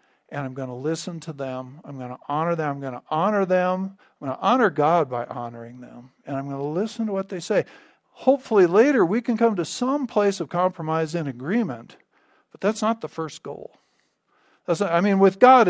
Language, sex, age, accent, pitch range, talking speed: English, male, 50-69, American, 145-190 Hz, 220 wpm